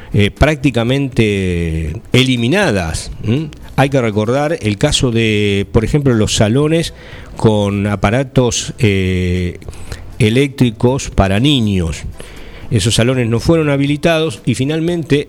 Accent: Argentinian